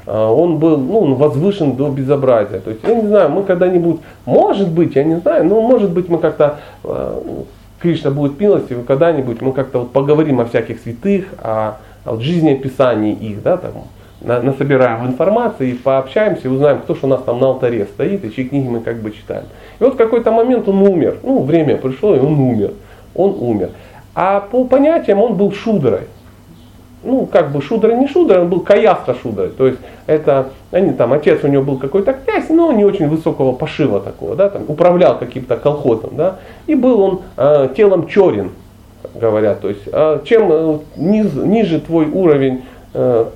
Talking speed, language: 180 wpm, Russian